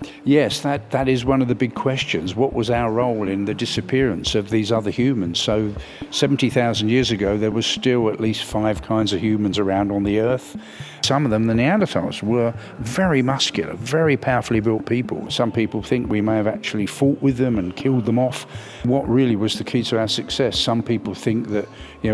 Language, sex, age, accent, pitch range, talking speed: English, male, 50-69, British, 105-125 Hz, 205 wpm